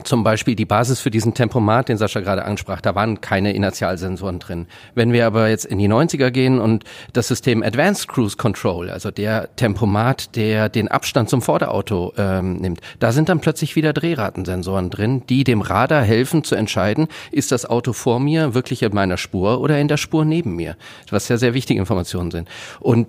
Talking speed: 195 wpm